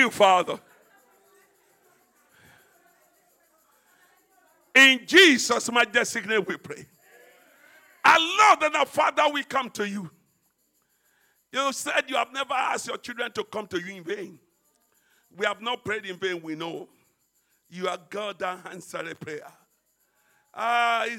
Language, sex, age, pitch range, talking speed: English, male, 50-69, 215-275 Hz, 135 wpm